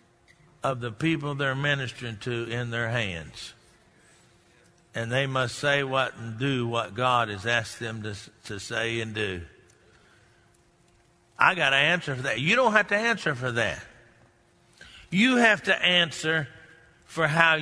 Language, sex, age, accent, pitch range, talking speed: English, male, 60-79, American, 135-205 Hz, 155 wpm